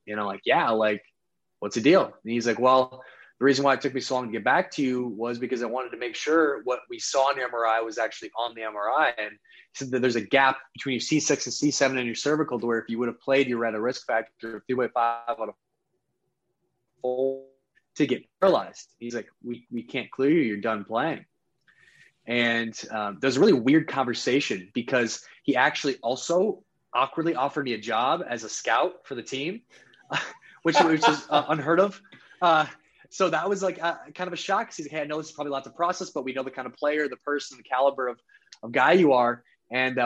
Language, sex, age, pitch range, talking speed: English, male, 20-39, 120-150 Hz, 240 wpm